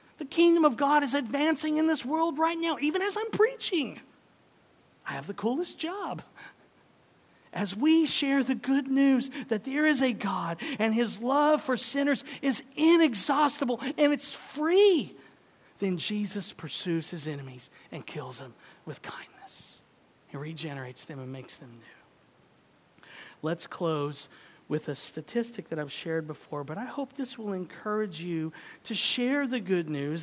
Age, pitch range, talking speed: 40-59, 180-275 Hz, 155 wpm